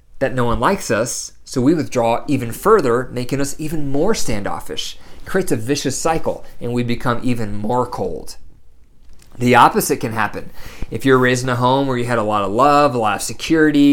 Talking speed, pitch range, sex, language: 205 wpm, 115-150 Hz, male, English